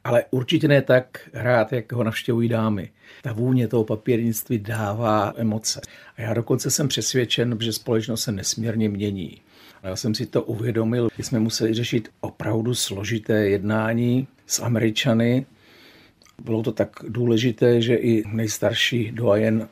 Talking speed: 145 wpm